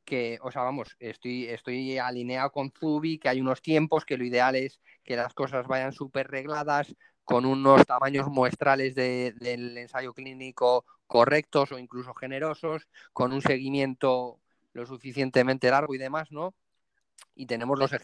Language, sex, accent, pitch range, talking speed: Spanish, male, Spanish, 125-155 Hz, 150 wpm